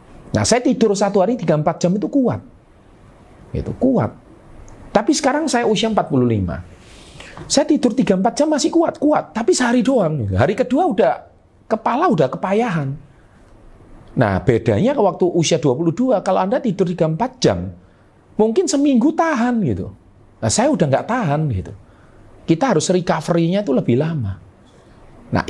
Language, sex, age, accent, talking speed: Indonesian, male, 40-59, native, 145 wpm